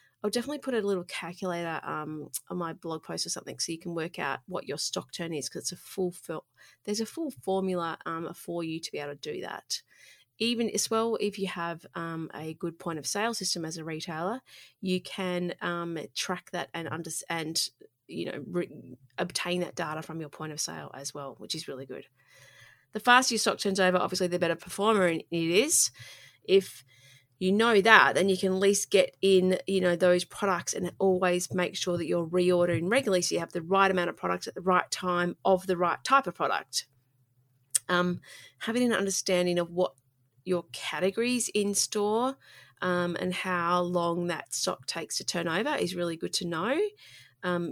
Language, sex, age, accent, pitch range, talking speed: English, female, 30-49, Australian, 165-200 Hz, 200 wpm